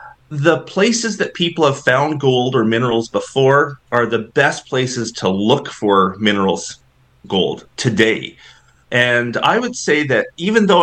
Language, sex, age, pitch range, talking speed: English, male, 30-49, 105-140 Hz, 150 wpm